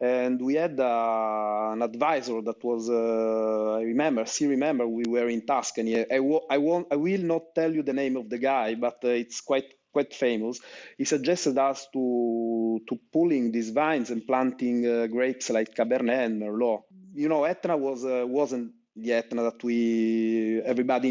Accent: Italian